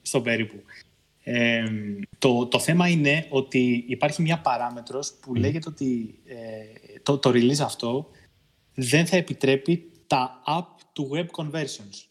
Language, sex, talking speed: Greek, male, 115 wpm